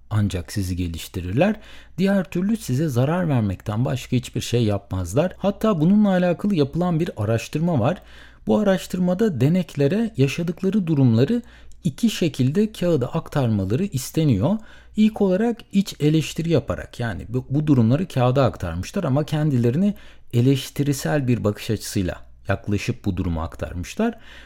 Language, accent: Turkish, native